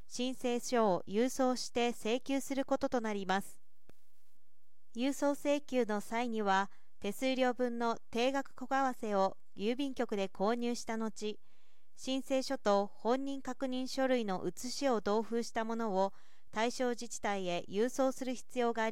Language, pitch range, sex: Japanese, 210-260 Hz, female